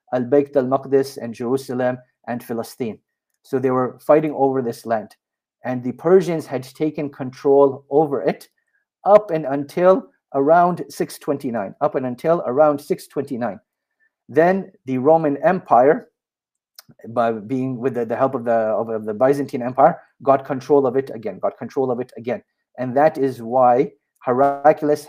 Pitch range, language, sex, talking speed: 125-155 Hz, English, male, 155 wpm